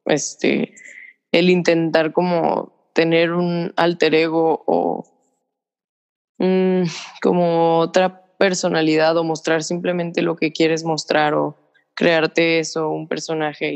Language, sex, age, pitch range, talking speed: Spanish, female, 20-39, 155-180 Hz, 110 wpm